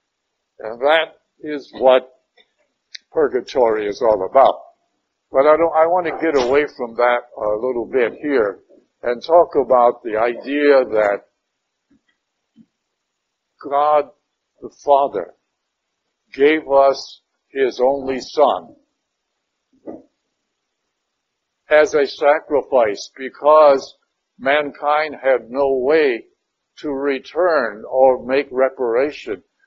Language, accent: English, American